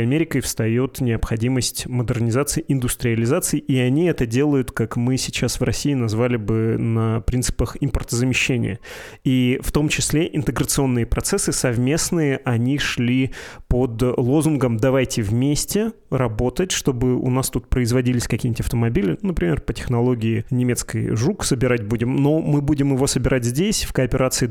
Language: Russian